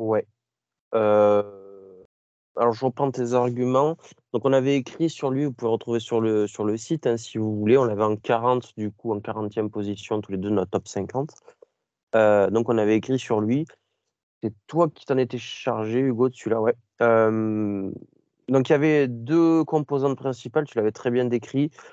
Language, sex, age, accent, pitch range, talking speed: French, male, 20-39, French, 110-130 Hz, 190 wpm